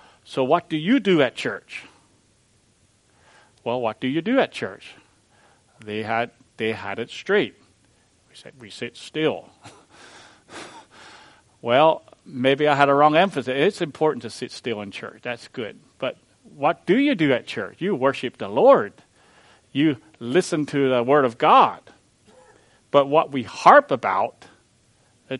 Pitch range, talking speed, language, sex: 110-145 Hz, 155 wpm, English, male